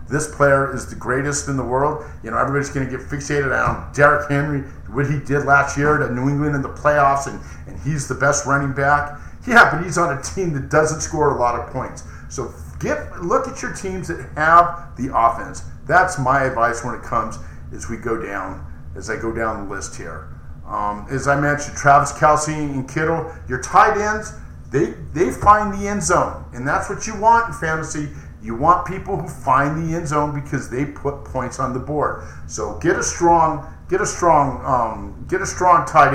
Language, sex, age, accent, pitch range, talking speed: English, male, 50-69, American, 125-155 Hz, 210 wpm